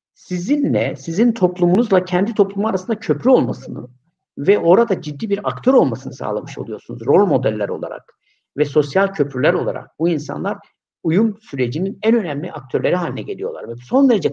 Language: Turkish